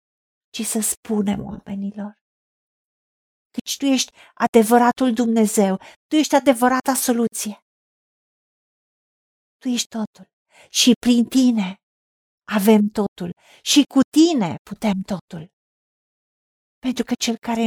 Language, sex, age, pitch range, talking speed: Romanian, female, 50-69, 195-230 Hz, 100 wpm